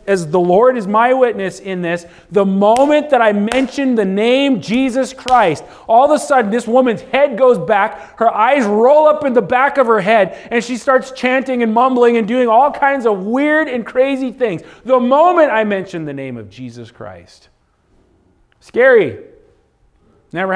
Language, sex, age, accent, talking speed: English, male, 40-59, American, 180 wpm